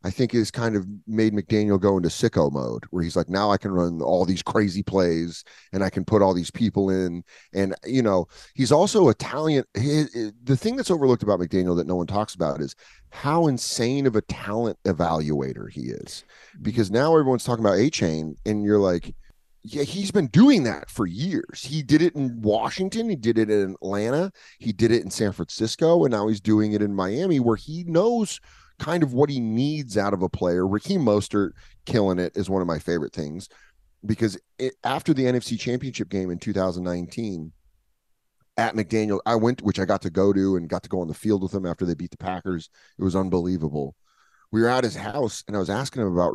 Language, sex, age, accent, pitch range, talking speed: English, male, 30-49, American, 90-115 Hz, 210 wpm